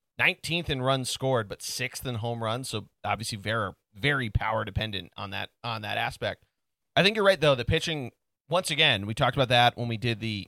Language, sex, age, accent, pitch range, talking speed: English, male, 30-49, American, 110-135 Hz, 210 wpm